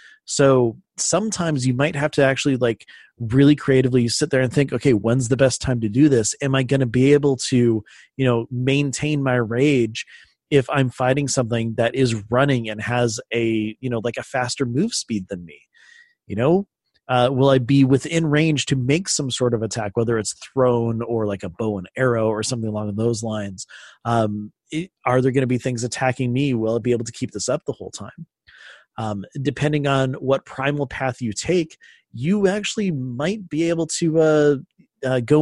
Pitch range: 120-150 Hz